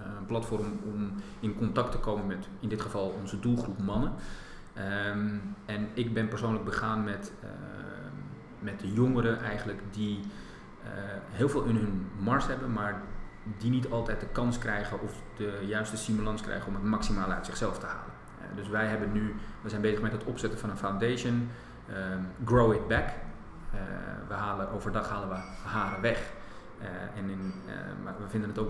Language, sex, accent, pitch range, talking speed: Dutch, male, Dutch, 100-115 Hz, 185 wpm